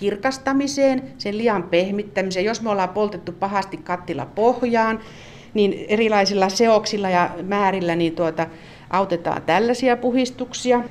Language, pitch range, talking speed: Finnish, 180-250 Hz, 115 wpm